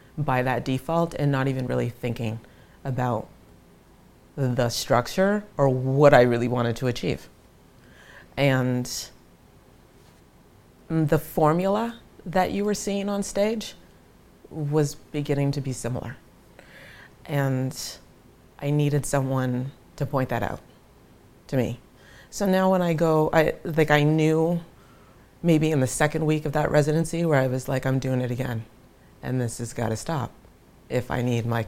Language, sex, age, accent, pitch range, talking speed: English, female, 30-49, American, 120-145 Hz, 145 wpm